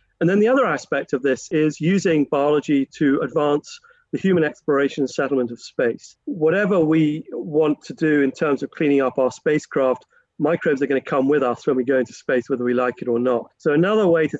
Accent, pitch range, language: British, 130-155 Hz, English